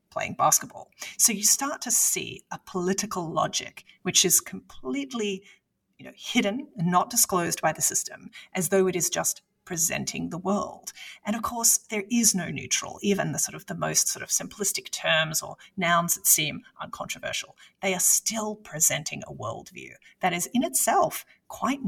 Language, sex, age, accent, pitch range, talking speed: English, female, 30-49, Australian, 180-220 Hz, 175 wpm